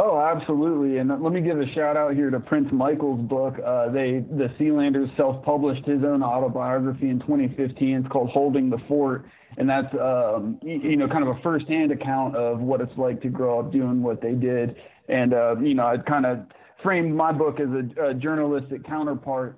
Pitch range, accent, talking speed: 130-145 Hz, American, 200 wpm